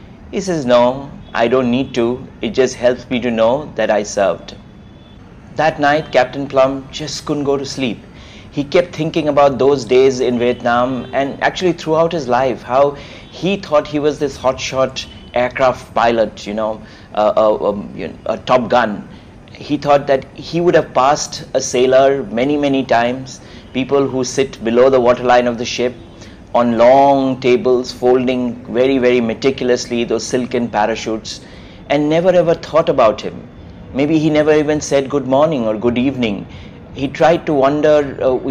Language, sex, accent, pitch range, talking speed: English, male, Indian, 120-140 Hz, 165 wpm